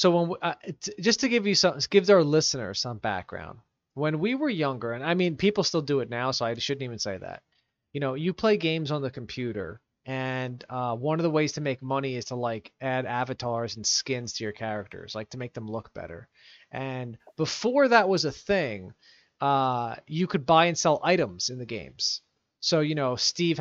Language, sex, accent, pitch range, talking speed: English, male, American, 130-175 Hz, 215 wpm